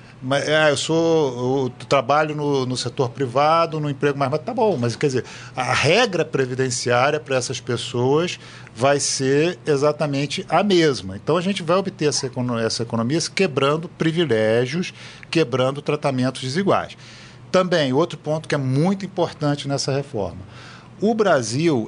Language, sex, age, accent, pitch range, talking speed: Portuguese, male, 40-59, Brazilian, 125-160 Hz, 150 wpm